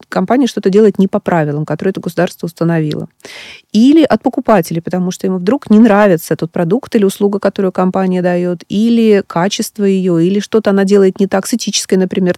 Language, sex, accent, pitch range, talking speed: Russian, female, native, 180-230 Hz, 185 wpm